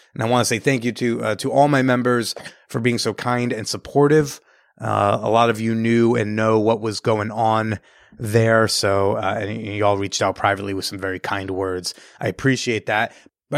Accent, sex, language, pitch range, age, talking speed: American, male, English, 115-140 Hz, 30-49, 210 wpm